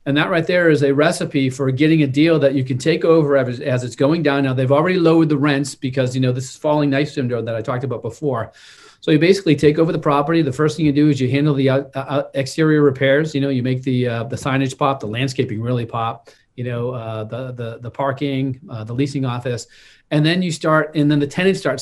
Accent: American